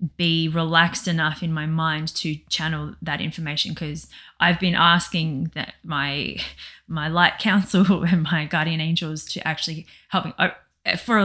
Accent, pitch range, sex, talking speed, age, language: Australian, 155-180 Hz, female, 155 wpm, 20-39, English